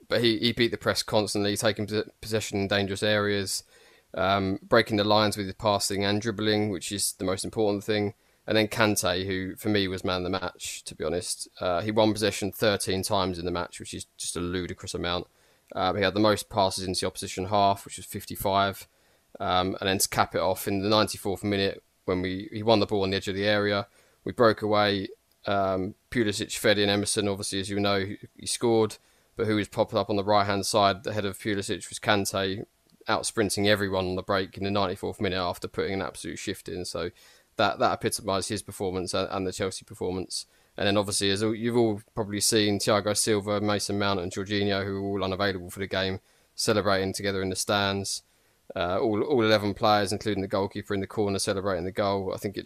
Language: English